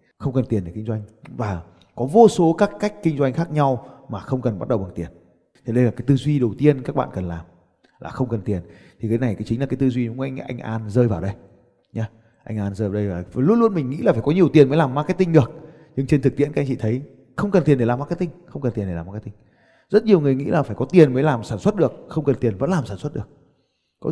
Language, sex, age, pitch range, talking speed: Vietnamese, male, 20-39, 120-170 Hz, 295 wpm